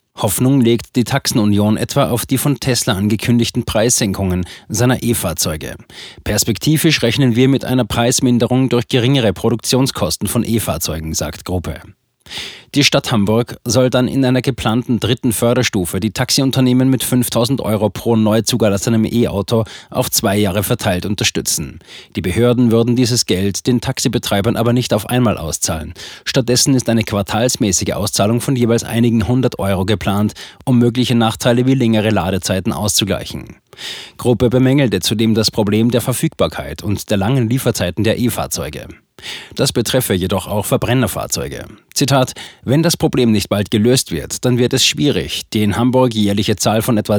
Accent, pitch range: German, 105-125 Hz